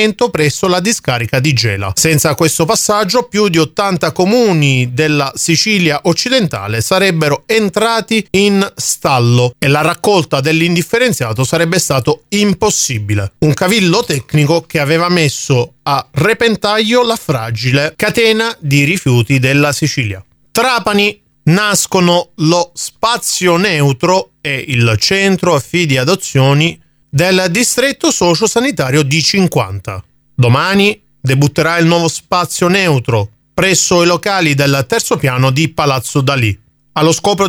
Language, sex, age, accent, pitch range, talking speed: Italian, male, 30-49, native, 140-195 Hz, 120 wpm